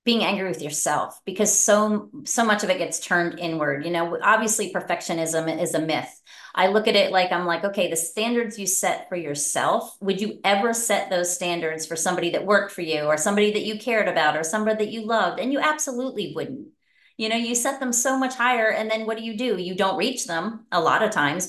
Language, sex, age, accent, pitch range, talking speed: English, female, 30-49, American, 175-220 Hz, 230 wpm